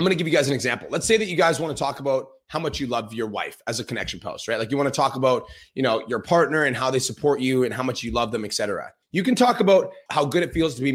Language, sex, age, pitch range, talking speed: English, male, 30-49, 130-170 Hz, 335 wpm